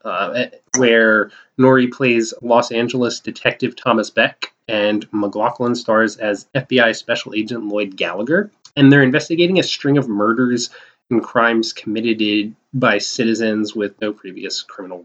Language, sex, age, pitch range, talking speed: English, male, 20-39, 110-140 Hz, 135 wpm